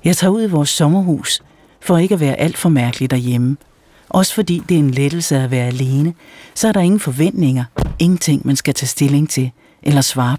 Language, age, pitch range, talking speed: Danish, 60-79, 120-155 Hz, 210 wpm